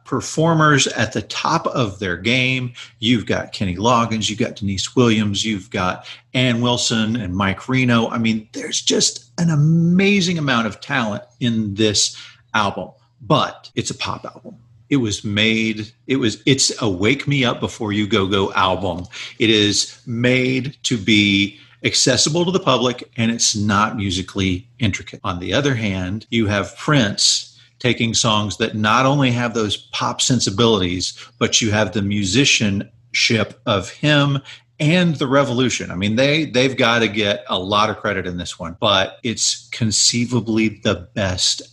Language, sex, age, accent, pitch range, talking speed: English, male, 40-59, American, 100-125 Hz, 165 wpm